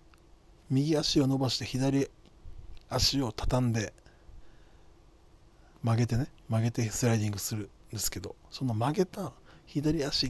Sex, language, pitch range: male, Japanese, 105-140 Hz